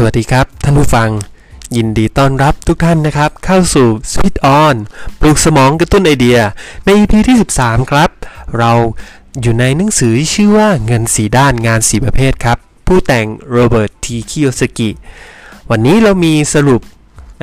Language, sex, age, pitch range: Thai, male, 20-39, 110-145 Hz